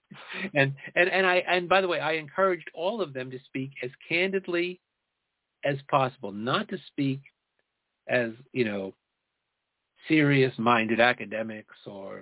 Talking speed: 140 wpm